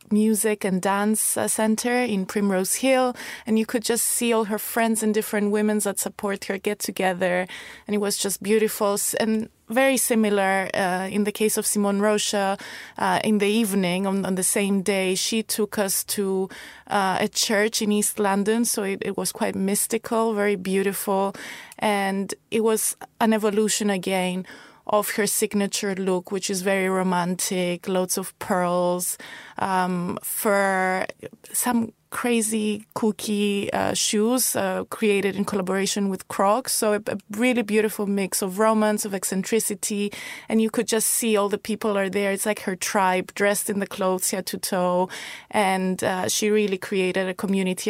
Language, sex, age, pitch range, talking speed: English, female, 20-39, 195-220 Hz, 165 wpm